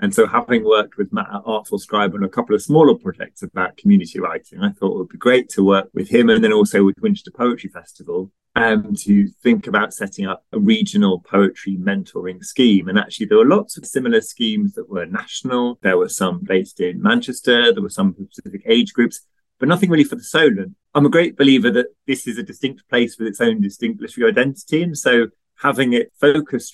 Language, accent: English, British